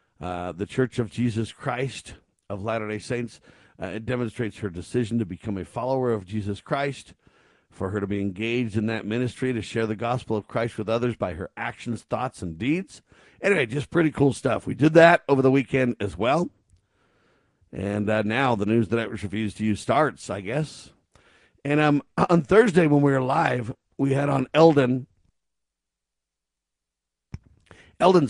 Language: English